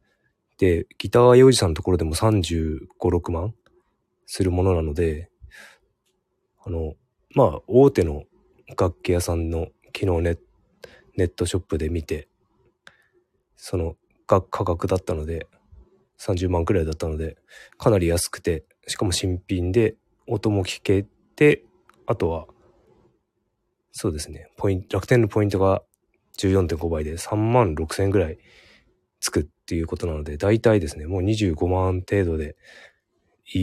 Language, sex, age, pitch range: Japanese, male, 20-39, 85-100 Hz